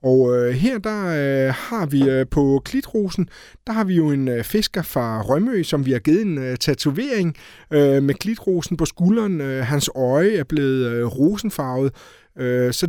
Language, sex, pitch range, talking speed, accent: Danish, male, 125-160 Hz, 145 wpm, native